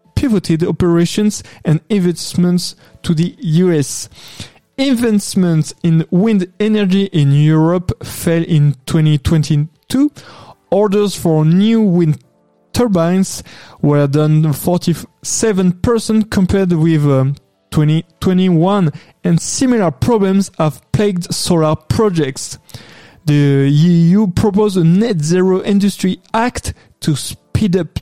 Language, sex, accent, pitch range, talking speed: English, male, French, 155-205 Hz, 95 wpm